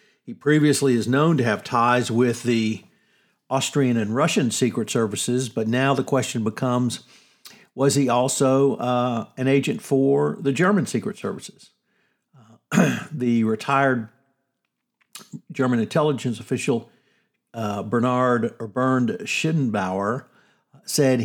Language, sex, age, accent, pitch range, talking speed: English, male, 50-69, American, 115-145 Hz, 115 wpm